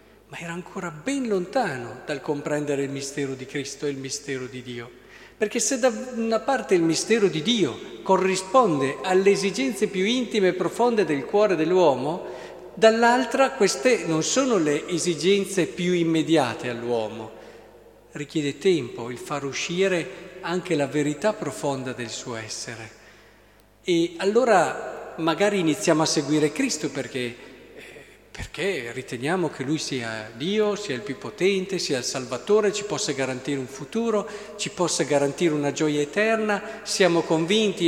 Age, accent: 50-69, native